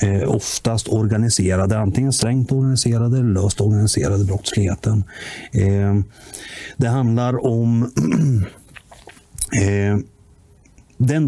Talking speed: 70 wpm